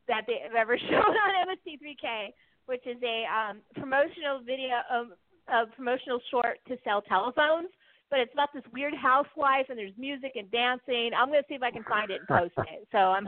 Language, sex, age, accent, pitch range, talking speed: English, female, 40-59, American, 215-285 Hz, 215 wpm